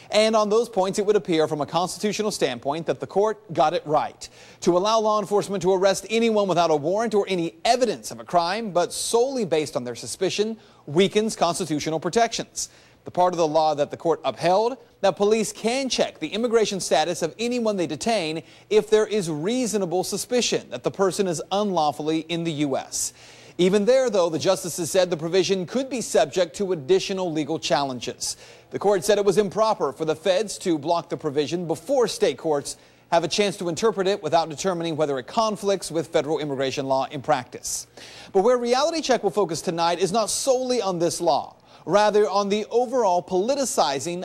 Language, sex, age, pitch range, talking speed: English, male, 30-49, 160-210 Hz, 190 wpm